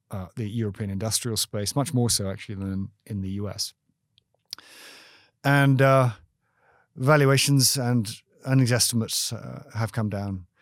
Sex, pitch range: male, 105-130 Hz